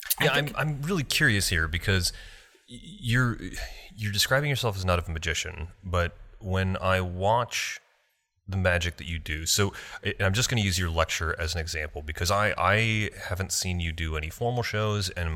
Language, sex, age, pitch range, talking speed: English, male, 30-49, 80-100 Hz, 185 wpm